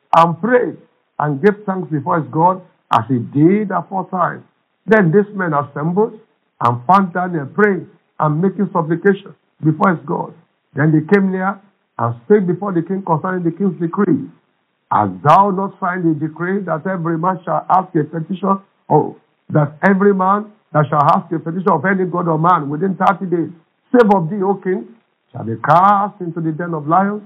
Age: 50-69